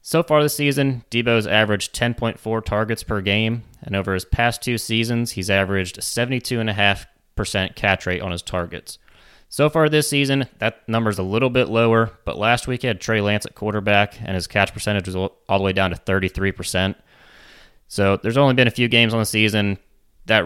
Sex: male